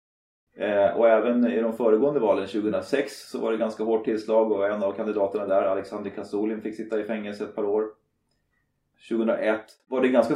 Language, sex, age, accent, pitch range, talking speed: Swedish, male, 30-49, native, 105-125 Hz, 190 wpm